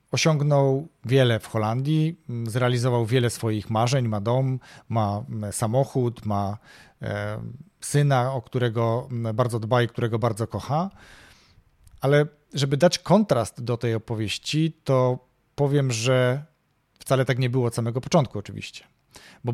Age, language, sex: 40-59, Polish, male